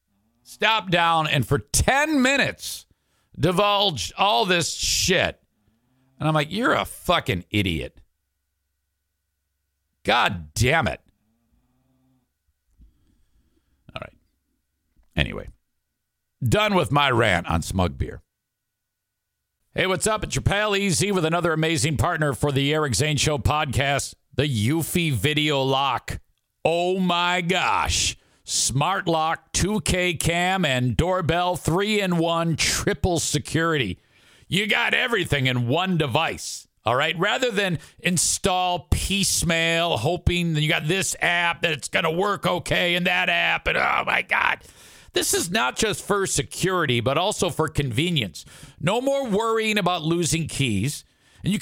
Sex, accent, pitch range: male, American, 120-180 Hz